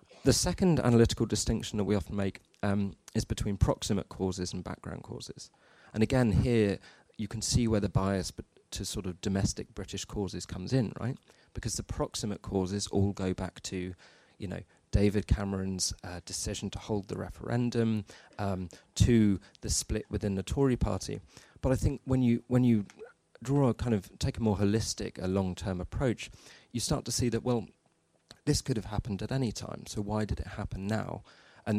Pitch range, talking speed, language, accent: 95-115 Hz, 185 wpm, English, British